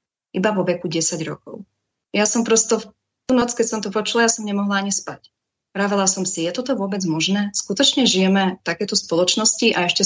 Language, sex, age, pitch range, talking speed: Slovak, female, 30-49, 165-200 Hz, 205 wpm